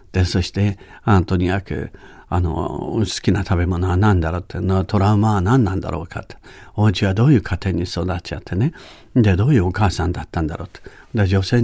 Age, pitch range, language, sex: 60-79, 95-140 Hz, Japanese, male